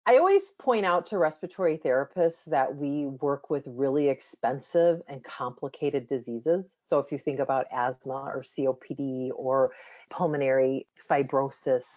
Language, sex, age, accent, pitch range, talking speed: English, female, 40-59, American, 140-190 Hz, 135 wpm